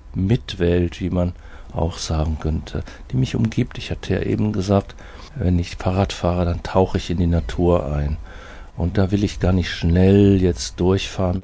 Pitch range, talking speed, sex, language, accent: 85-100 Hz, 180 wpm, male, German, German